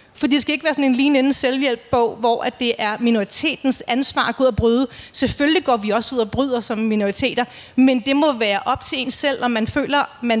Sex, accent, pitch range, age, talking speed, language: female, native, 230-270 Hz, 30-49, 240 wpm, Danish